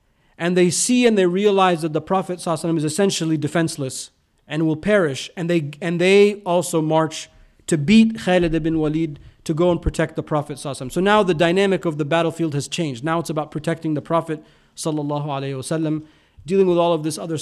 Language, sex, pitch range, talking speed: English, male, 155-185 Hz, 195 wpm